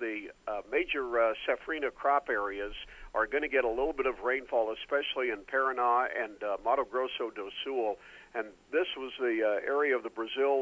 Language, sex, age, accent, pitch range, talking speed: English, male, 50-69, American, 120-160 Hz, 190 wpm